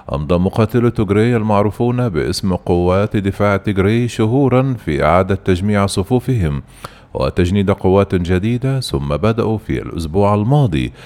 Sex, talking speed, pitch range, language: male, 115 wpm, 90-115 Hz, Arabic